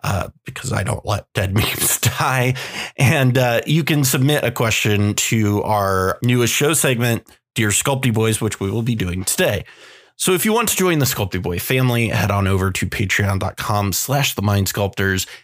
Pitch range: 105-140 Hz